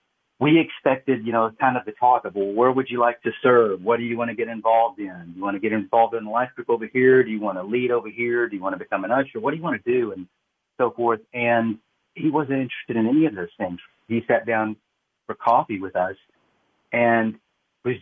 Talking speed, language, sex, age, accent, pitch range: 255 wpm, English, male, 40-59, American, 105-125 Hz